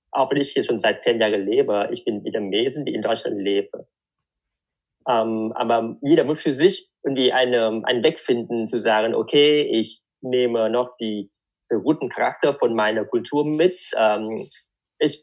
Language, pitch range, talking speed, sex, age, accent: German, 105-135 Hz, 170 wpm, male, 20-39, German